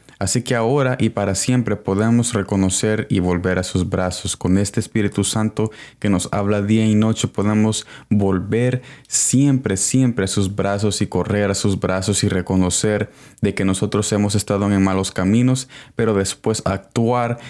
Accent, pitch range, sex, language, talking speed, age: Mexican, 95-120 Hz, male, Spanish, 165 wpm, 20-39